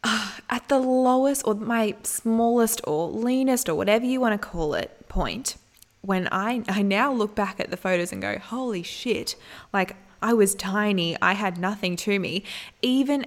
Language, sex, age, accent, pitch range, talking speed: English, female, 20-39, Australian, 185-230 Hz, 175 wpm